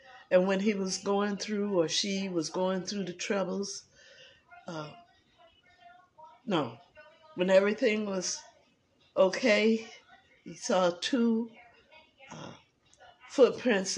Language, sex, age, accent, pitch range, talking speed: English, female, 60-79, American, 165-230 Hz, 105 wpm